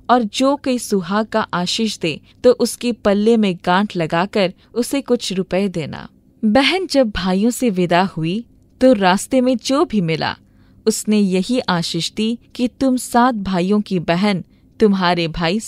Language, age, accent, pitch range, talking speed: Hindi, 20-39, native, 175-235 Hz, 155 wpm